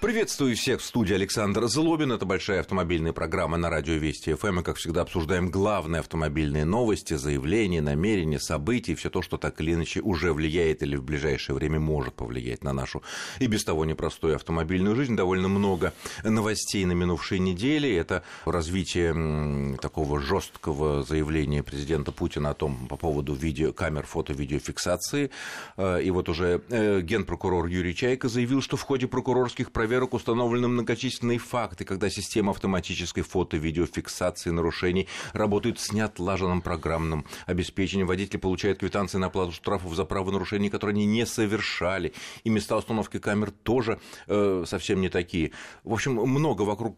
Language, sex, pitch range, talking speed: Russian, male, 80-105 Hz, 150 wpm